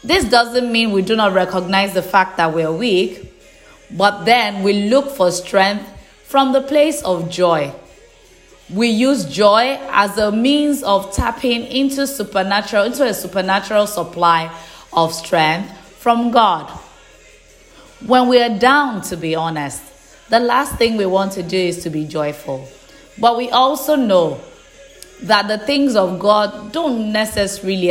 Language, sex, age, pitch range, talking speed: English, female, 20-39, 175-235 Hz, 155 wpm